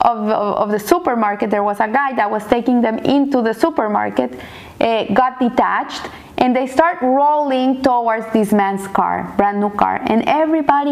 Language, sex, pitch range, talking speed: English, female, 230-300 Hz, 170 wpm